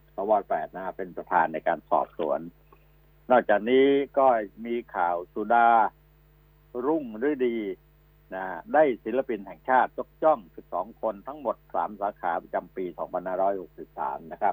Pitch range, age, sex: 110-155 Hz, 60-79, male